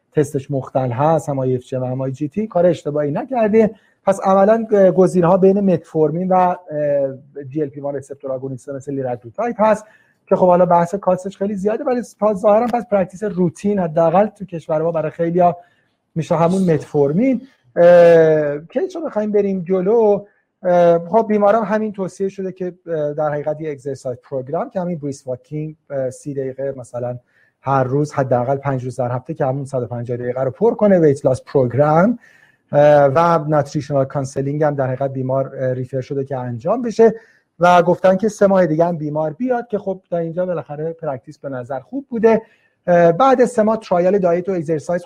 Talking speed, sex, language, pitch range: 160 wpm, male, Persian, 140-190 Hz